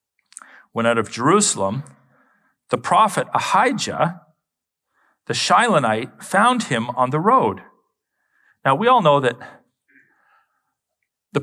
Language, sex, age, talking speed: English, male, 40-59, 105 wpm